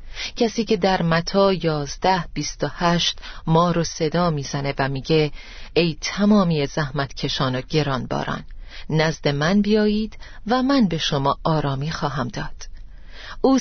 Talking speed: 140 wpm